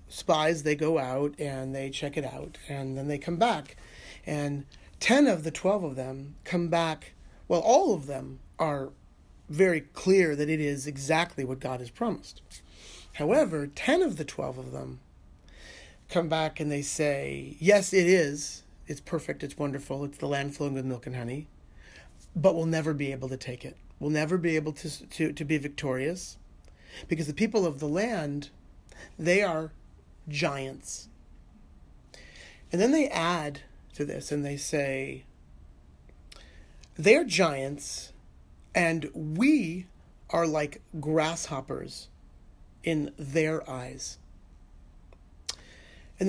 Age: 40-59